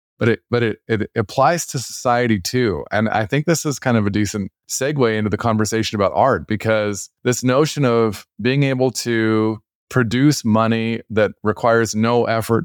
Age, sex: 20-39, male